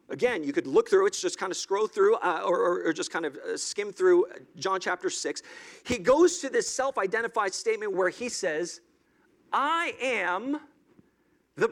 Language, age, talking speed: English, 40-59, 175 wpm